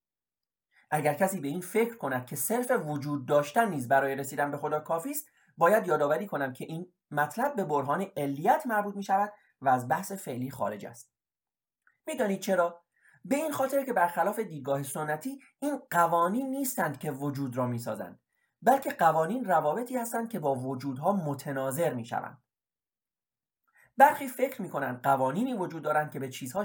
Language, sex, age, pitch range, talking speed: Persian, male, 30-49, 140-210 Hz, 160 wpm